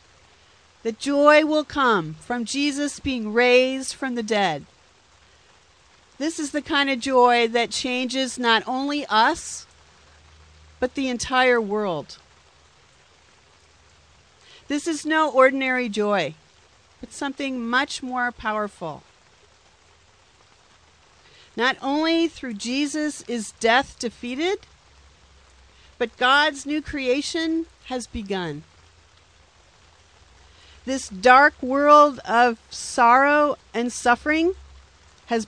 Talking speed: 95 wpm